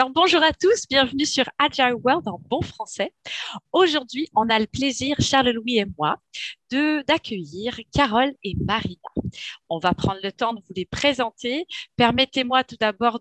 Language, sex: English, female